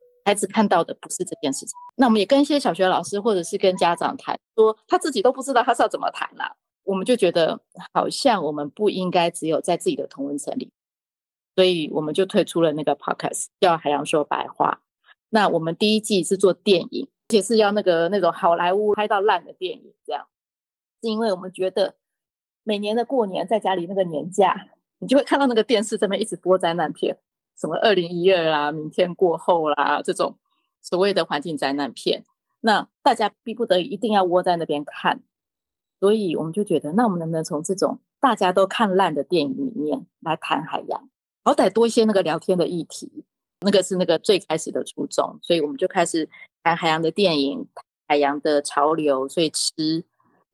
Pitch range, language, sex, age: 160-220 Hz, Chinese, female, 20-39